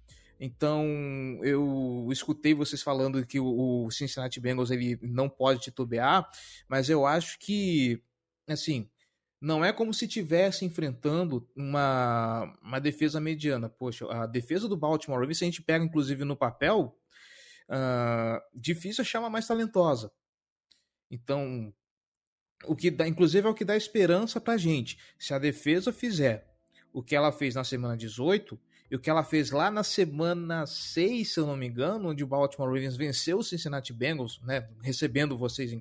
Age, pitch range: 20-39, 125-170 Hz